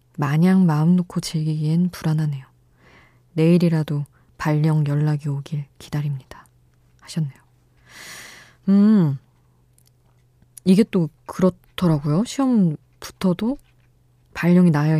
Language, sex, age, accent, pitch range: Korean, female, 20-39, native, 125-170 Hz